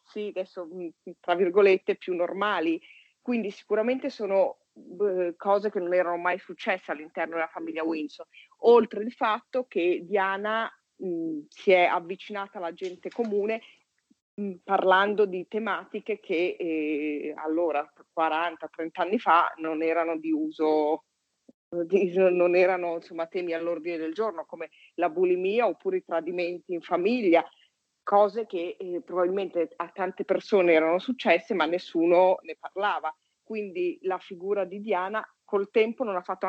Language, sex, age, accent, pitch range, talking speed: Italian, female, 40-59, native, 170-205 Hz, 140 wpm